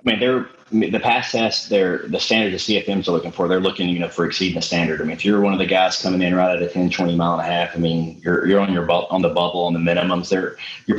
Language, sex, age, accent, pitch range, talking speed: English, male, 30-49, American, 85-110 Hz, 305 wpm